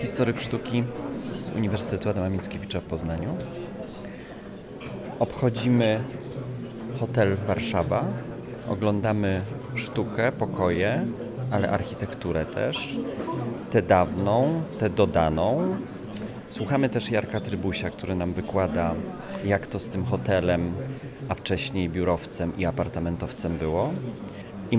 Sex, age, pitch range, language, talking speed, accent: male, 30-49, 100-125 Hz, Polish, 95 wpm, native